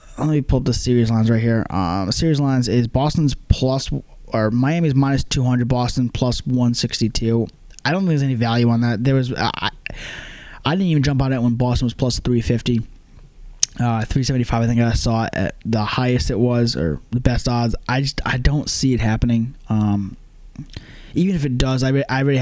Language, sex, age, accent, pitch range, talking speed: English, male, 20-39, American, 115-130 Hz, 205 wpm